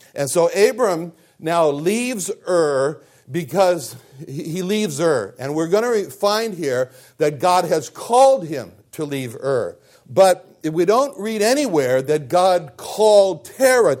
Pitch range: 140-195 Hz